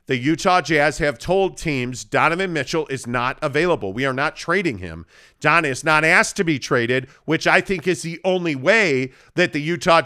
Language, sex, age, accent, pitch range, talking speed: English, male, 50-69, American, 140-175 Hz, 195 wpm